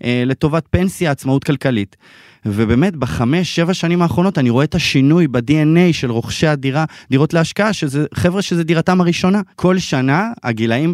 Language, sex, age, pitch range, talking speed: Hebrew, male, 20-39, 115-165 Hz, 150 wpm